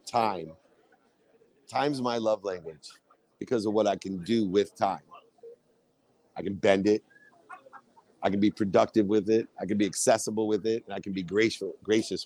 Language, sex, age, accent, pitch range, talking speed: English, male, 50-69, American, 110-155 Hz, 165 wpm